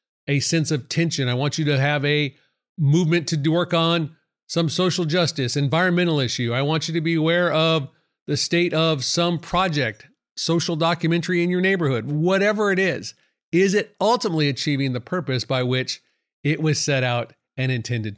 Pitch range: 140-175 Hz